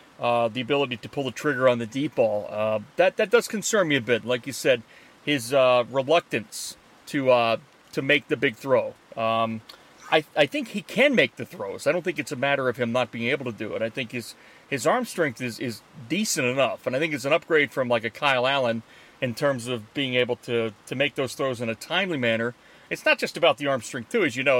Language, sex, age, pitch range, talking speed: English, male, 40-59, 125-160 Hz, 245 wpm